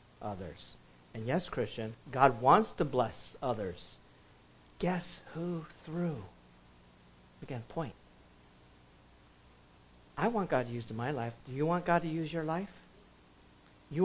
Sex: male